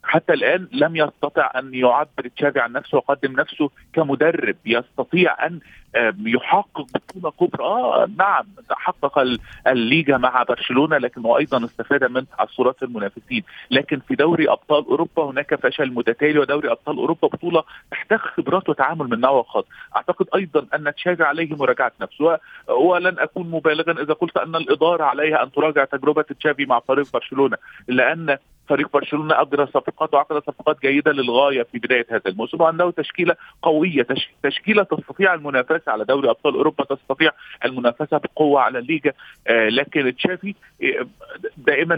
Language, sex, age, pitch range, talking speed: Arabic, male, 40-59, 135-165 Hz, 145 wpm